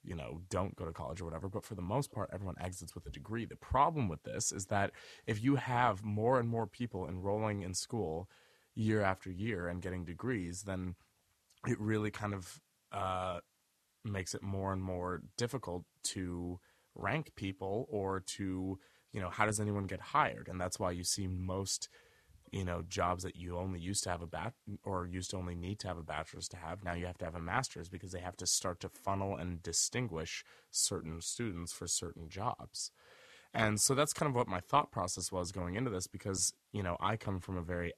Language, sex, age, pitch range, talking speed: English, male, 20-39, 85-105 Hz, 210 wpm